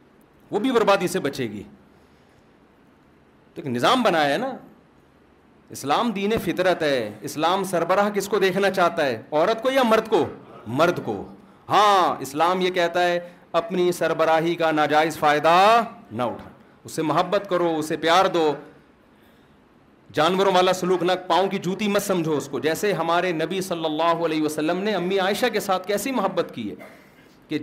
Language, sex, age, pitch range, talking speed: Urdu, male, 40-59, 175-210 Hz, 165 wpm